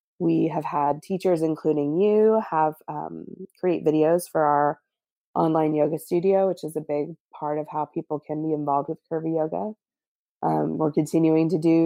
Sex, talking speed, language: female, 170 wpm, English